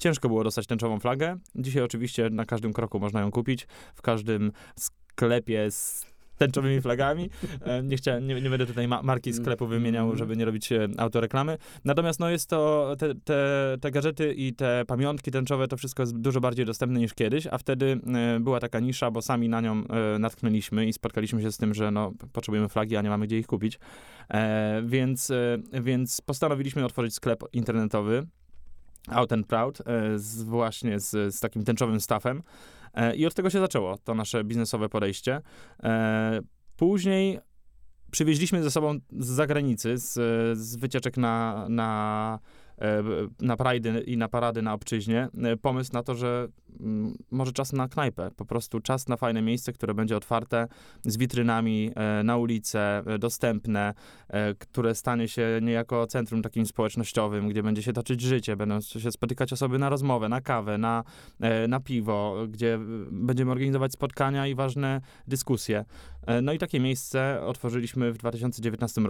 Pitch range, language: 110-130 Hz, Polish